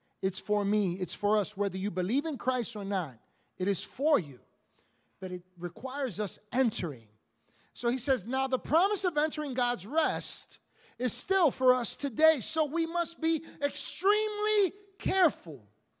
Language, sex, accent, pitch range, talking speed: English, male, American, 205-285 Hz, 160 wpm